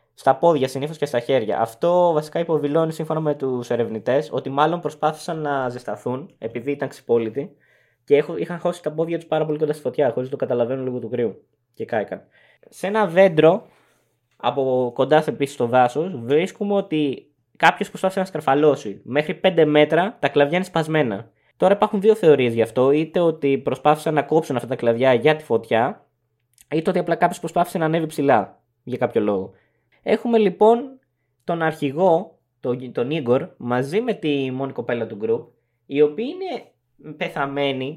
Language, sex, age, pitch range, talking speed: English, male, 20-39, 130-175 Hz, 170 wpm